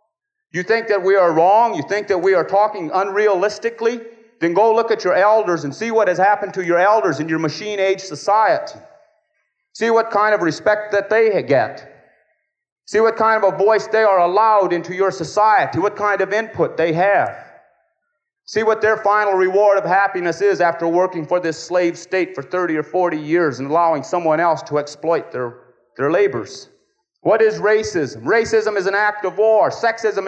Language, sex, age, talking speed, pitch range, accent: English, male, 30-49, 190 wpm, 190-225 Hz, American